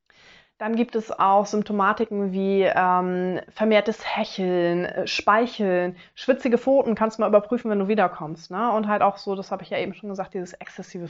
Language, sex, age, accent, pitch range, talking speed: German, female, 20-39, German, 185-220 Hz, 175 wpm